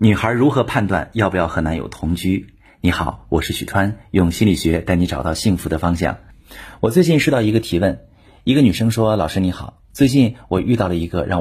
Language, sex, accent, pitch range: Chinese, male, native, 90-125 Hz